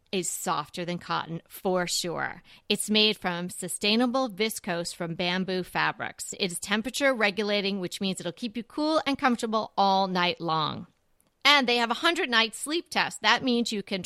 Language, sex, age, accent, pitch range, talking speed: English, female, 40-59, American, 185-245 Hz, 170 wpm